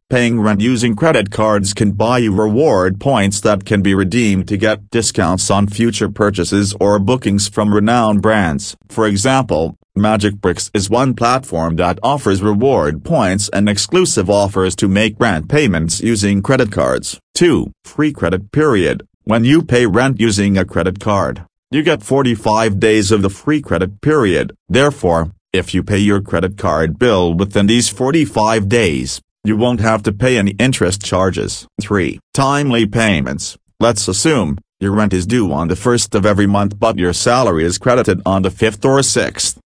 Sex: male